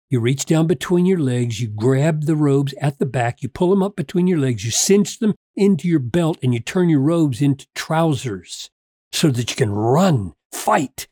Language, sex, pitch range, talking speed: English, male, 130-190 Hz, 210 wpm